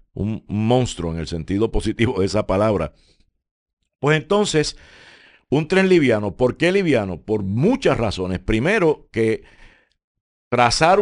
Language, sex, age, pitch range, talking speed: Spanish, male, 50-69, 105-140 Hz, 125 wpm